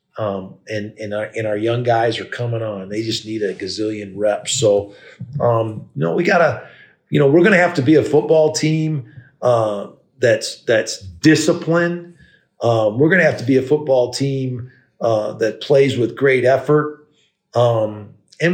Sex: male